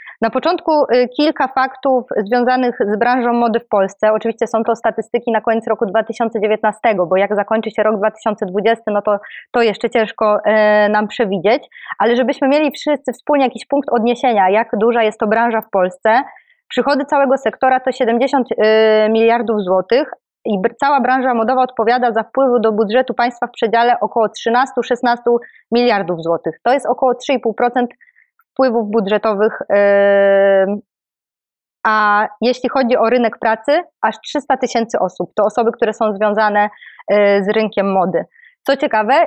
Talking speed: 145 wpm